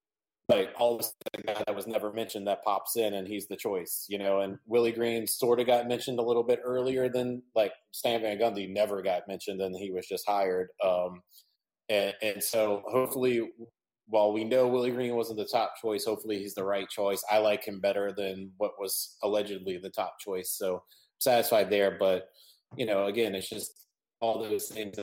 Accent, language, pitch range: American, English, 95-115 Hz